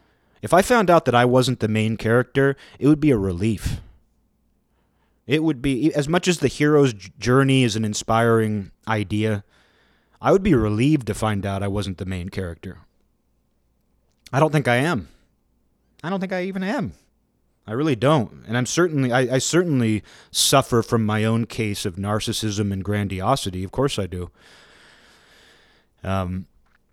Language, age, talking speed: English, 30-49, 165 wpm